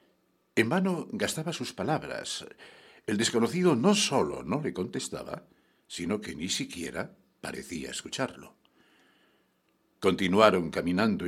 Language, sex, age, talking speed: English, male, 60-79, 105 wpm